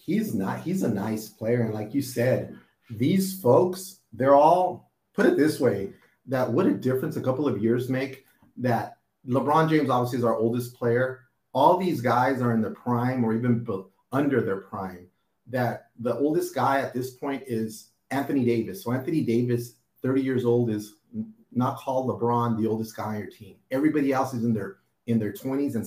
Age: 30-49